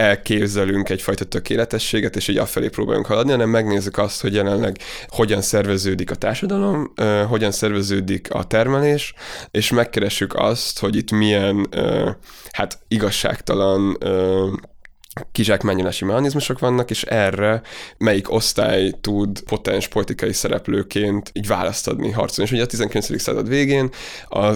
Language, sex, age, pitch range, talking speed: Hungarian, male, 20-39, 100-115 Hz, 130 wpm